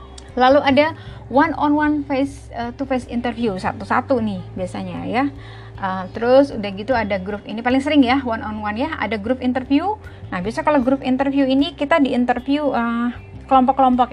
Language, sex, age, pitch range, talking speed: Indonesian, female, 30-49, 225-285 Hz, 175 wpm